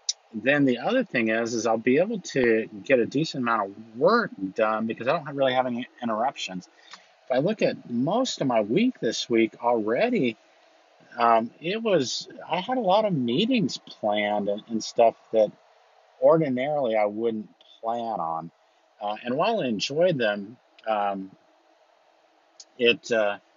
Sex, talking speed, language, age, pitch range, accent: male, 160 wpm, English, 50-69, 100-125 Hz, American